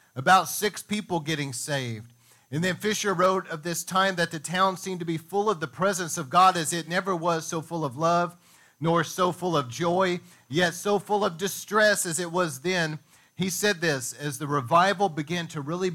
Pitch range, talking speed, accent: 130-175 Hz, 205 wpm, American